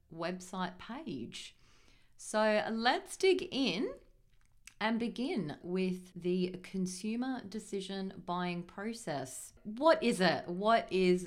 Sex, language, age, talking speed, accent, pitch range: female, English, 30-49, 100 wpm, Australian, 175-220 Hz